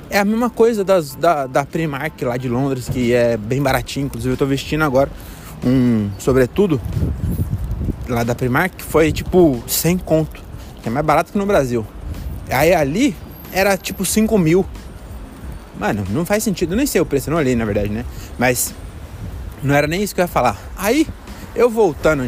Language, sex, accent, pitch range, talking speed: Portuguese, male, Brazilian, 100-155 Hz, 190 wpm